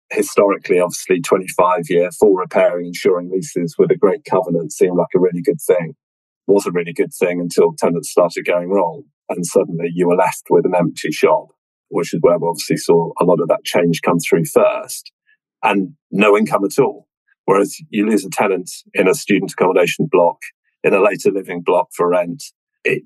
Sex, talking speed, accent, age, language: male, 190 wpm, British, 40-59, English